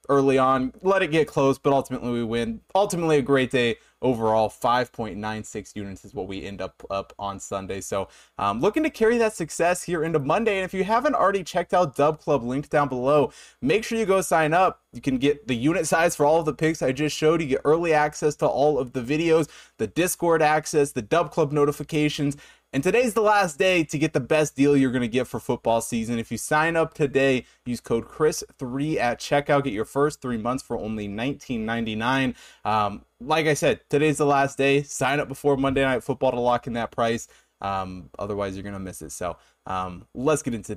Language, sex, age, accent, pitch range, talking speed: English, male, 20-39, American, 115-155 Hz, 220 wpm